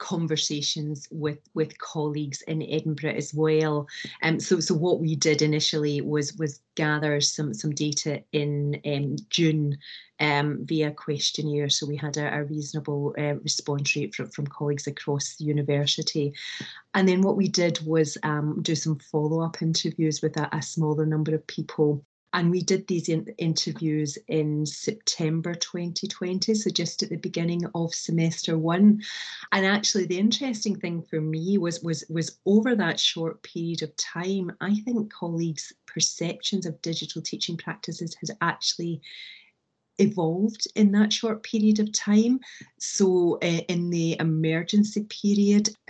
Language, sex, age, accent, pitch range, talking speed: English, female, 30-49, British, 150-185 Hz, 150 wpm